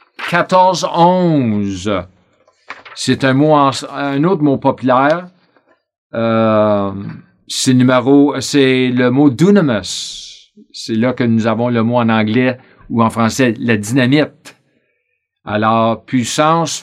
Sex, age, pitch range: male, 50-69, 130-165 Hz